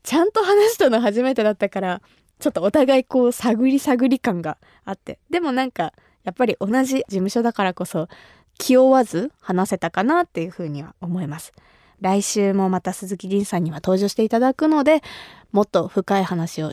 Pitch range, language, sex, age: 190-270 Hz, Japanese, female, 20-39